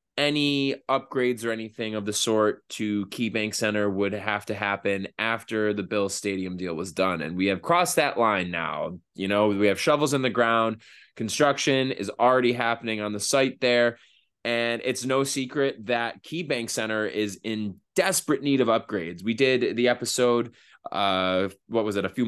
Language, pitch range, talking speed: English, 100-120 Hz, 185 wpm